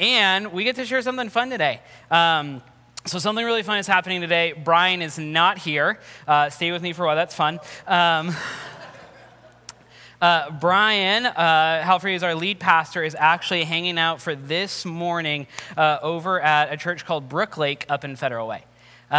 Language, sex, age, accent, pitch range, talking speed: English, male, 20-39, American, 150-180 Hz, 180 wpm